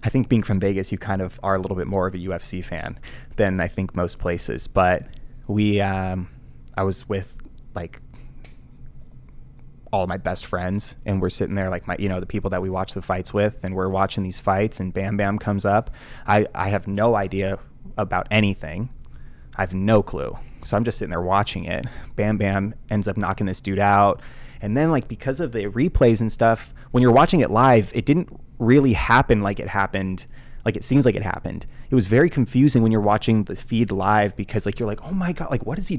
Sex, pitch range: male, 95-130 Hz